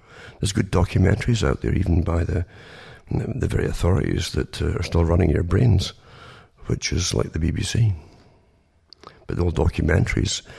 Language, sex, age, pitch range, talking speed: English, male, 50-69, 85-110 Hz, 145 wpm